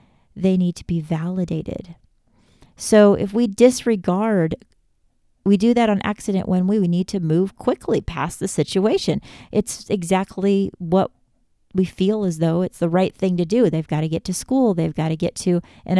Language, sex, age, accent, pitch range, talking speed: English, female, 40-59, American, 170-210 Hz, 185 wpm